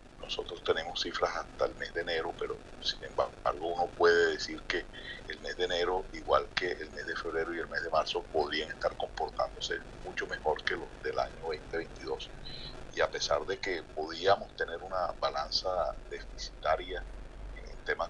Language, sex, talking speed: Spanish, male, 175 wpm